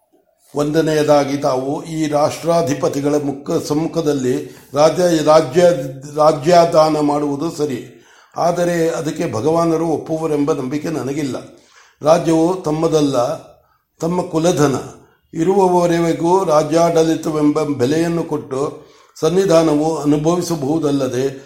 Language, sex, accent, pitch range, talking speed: Kannada, male, native, 145-170 Hz, 80 wpm